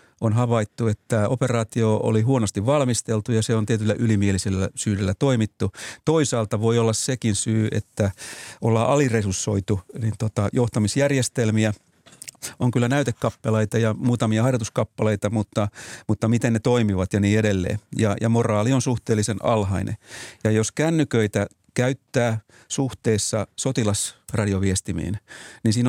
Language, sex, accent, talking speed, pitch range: Finnish, male, native, 120 wpm, 105-125 Hz